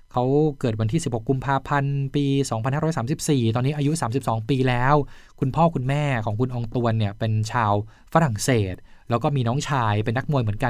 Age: 20-39